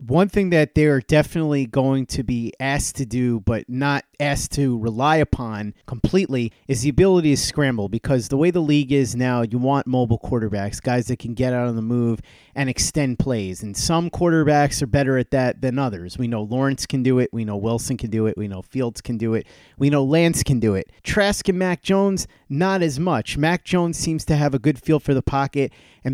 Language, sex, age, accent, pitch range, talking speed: English, male, 30-49, American, 120-150 Hz, 225 wpm